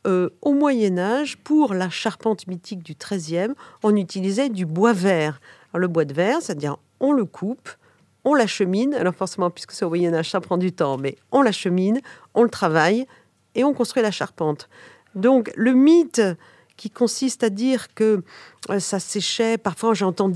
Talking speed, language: 175 wpm, French